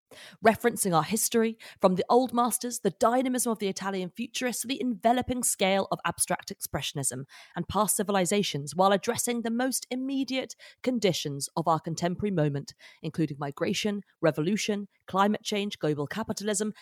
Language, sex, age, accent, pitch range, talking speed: English, female, 30-49, British, 160-225 Hz, 140 wpm